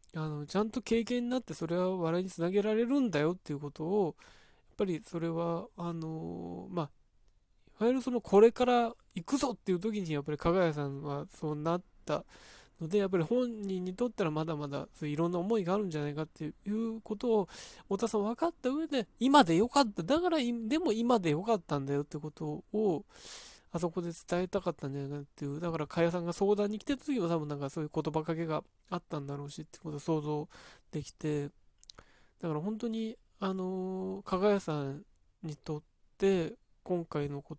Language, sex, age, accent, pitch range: Japanese, male, 20-39, native, 150-205 Hz